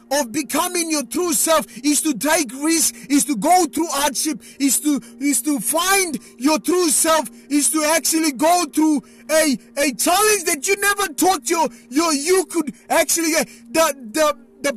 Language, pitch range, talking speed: English, 210-310 Hz, 180 wpm